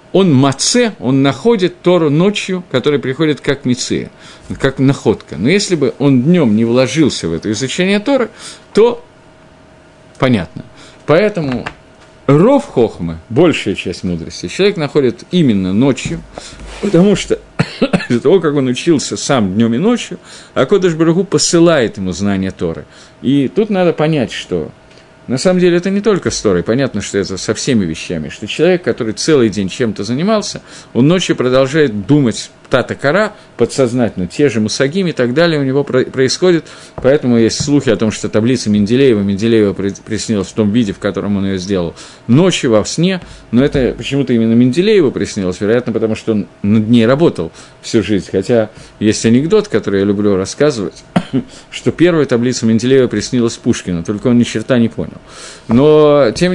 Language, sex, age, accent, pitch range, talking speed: Russian, male, 50-69, native, 110-165 Hz, 160 wpm